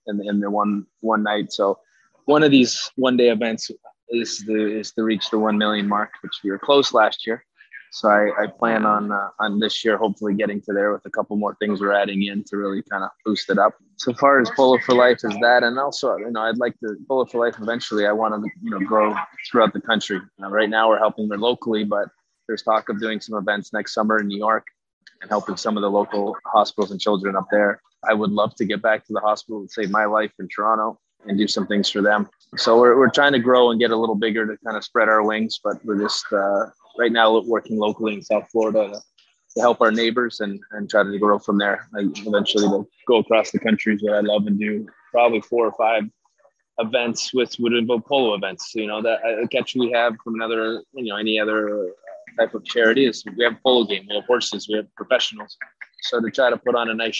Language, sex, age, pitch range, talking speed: English, male, 20-39, 105-115 Hz, 240 wpm